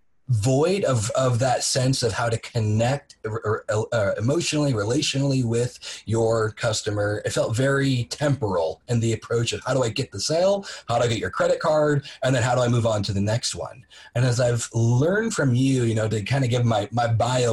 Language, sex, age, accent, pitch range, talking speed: English, male, 30-49, American, 110-135 Hz, 210 wpm